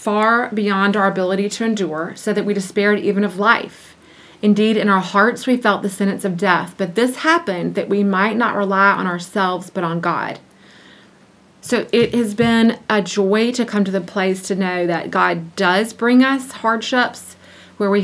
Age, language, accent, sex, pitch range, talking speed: 30-49, English, American, female, 180-210 Hz, 190 wpm